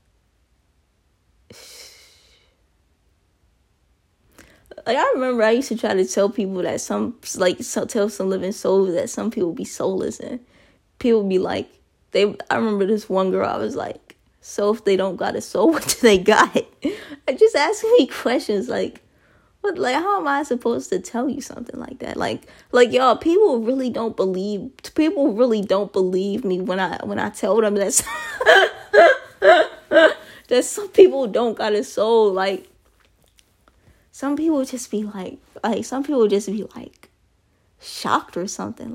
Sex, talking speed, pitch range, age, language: female, 165 wpm, 190-255 Hz, 20-39, English